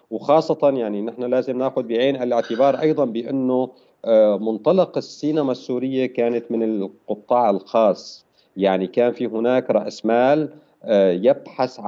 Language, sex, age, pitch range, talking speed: Arabic, male, 50-69, 110-155 Hz, 115 wpm